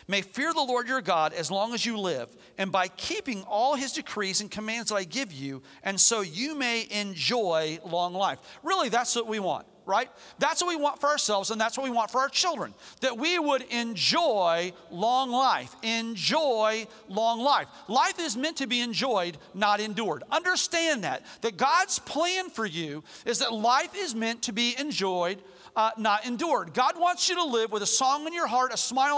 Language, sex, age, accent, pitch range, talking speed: English, male, 40-59, American, 210-290 Hz, 200 wpm